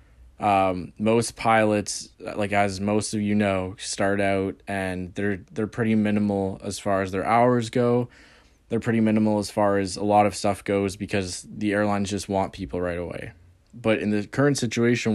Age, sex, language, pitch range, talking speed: 20-39, male, English, 95-110 Hz, 180 wpm